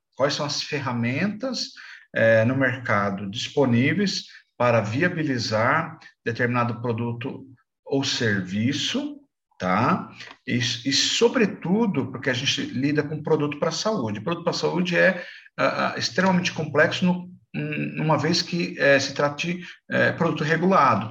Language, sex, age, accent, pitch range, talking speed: Portuguese, male, 50-69, Brazilian, 120-160 Hz, 130 wpm